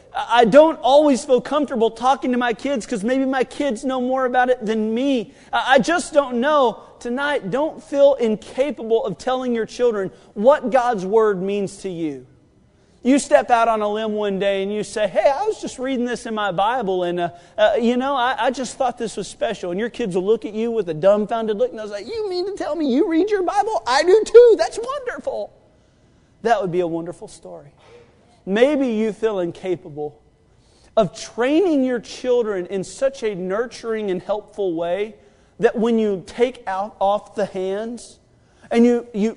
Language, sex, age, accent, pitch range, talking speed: English, male, 40-59, American, 190-255 Hz, 195 wpm